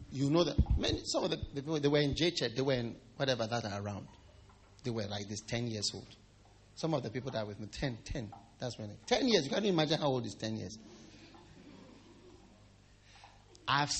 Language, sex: English, male